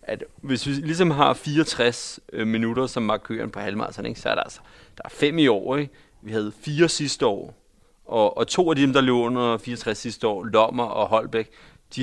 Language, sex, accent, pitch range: Danish, male, native, 110-135 Hz